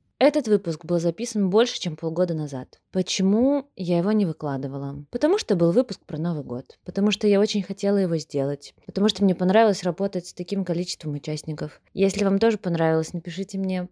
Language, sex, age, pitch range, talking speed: Russian, female, 20-39, 160-200 Hz, 180 wpm